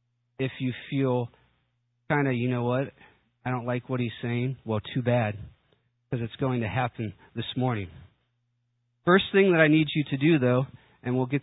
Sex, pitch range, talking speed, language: male, 115-135 Hz, 190 wpm, English